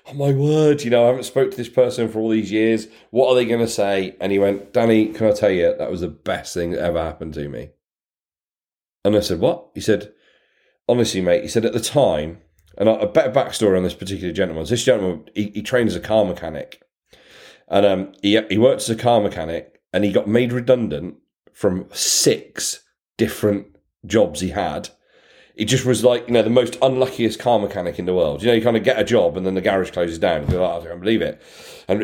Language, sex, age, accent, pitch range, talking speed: English, male, 40-59, British, 90-120 Hz, 230 wpm